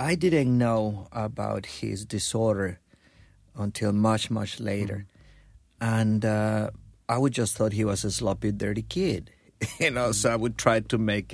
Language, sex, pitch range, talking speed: English, male, 100-130 Hz, 160 wpm